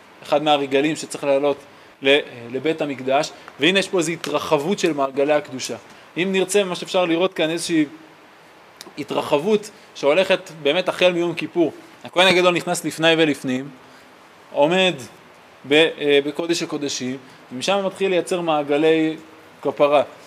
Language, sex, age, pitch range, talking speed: Hebrew, male, 20-39, 145-195 Hz, 120 wpm